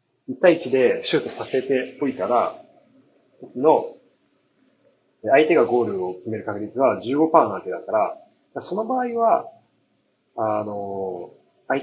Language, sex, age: Japanese, male, 40-59